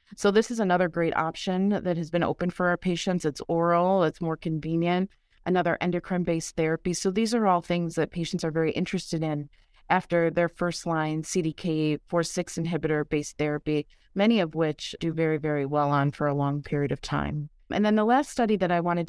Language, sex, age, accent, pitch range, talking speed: English, female, 30-49, American, 160-190 Hz, 190 wpm